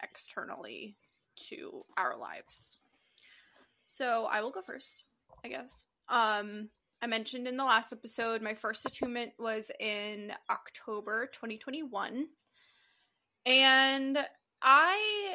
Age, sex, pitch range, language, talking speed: 20-39, female, 220-275 Hz, English, 105 wpm